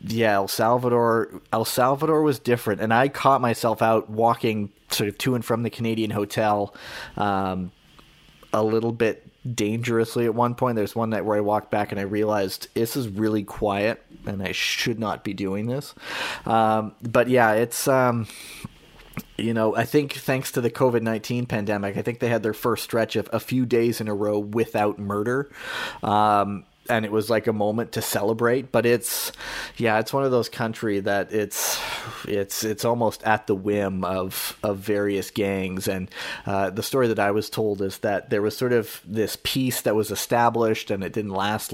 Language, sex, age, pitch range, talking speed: English, male, 30-49, 105-120 Hz, 190 wpm